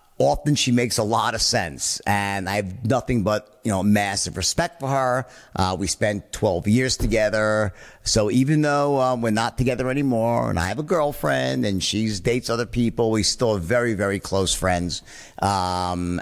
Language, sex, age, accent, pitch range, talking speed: English, male, 50-69, American, 100-125 Hz, 185 wpm